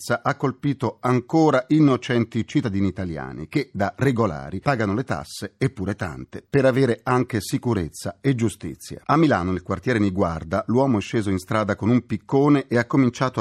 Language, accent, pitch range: Italian, native, 95-125 Hz